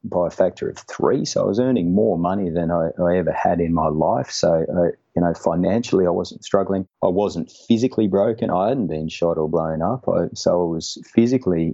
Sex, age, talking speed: male, 30-49, 210 wpm